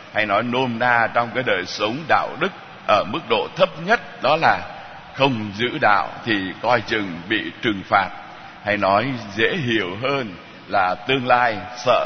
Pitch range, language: 100-135 Hz, Vietnamese